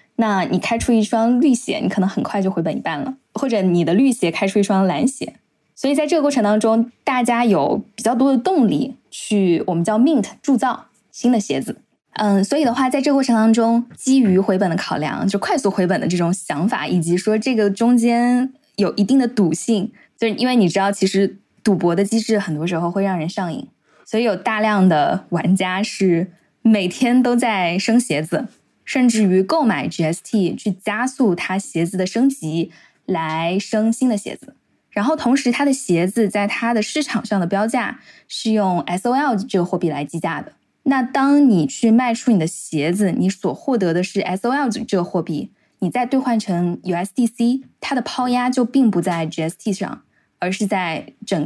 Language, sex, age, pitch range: Chinese, female, 10-29, 185-245 Hz